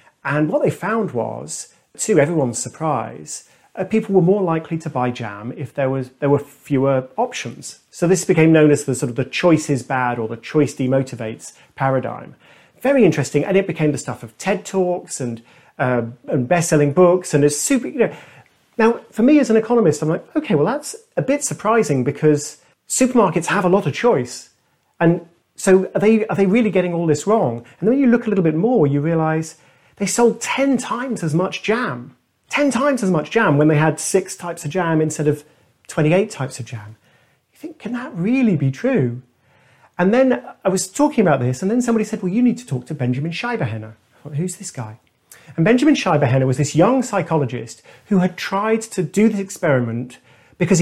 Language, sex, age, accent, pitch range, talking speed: English, male, 40-59, British, 135-195 Hz, 205 wpm